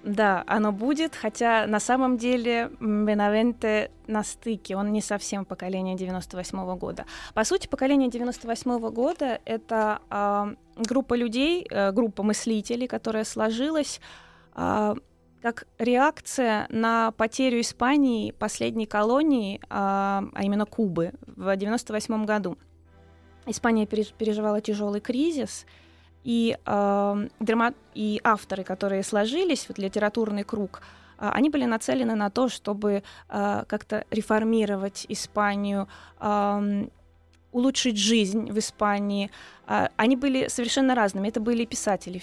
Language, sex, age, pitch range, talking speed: Russian, female, 20-39, 200-235 Hz, 115 wpm